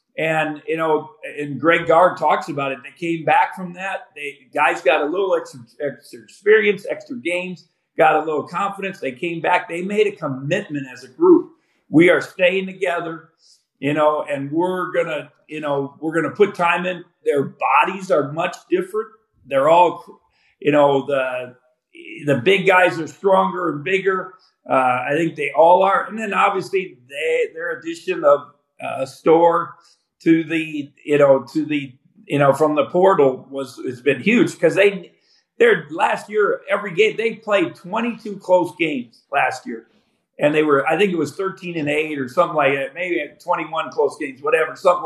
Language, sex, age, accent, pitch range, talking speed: English, male, 50-69, American, 150-195 Hz, 180 wpm